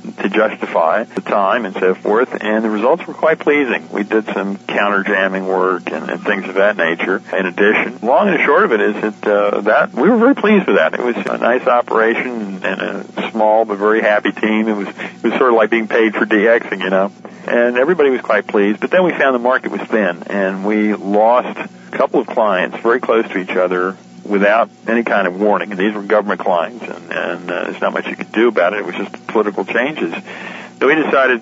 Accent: American